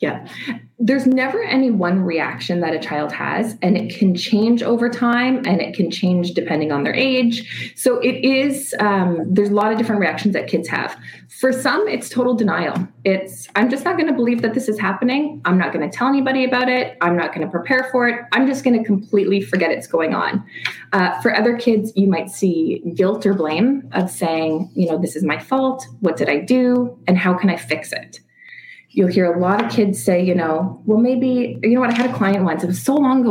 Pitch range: 190-250 Hz